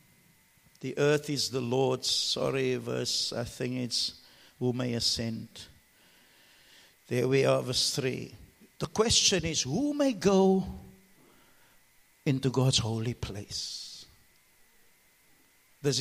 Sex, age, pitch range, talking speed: male, 60-79, 125-205 Hz, 110 wpm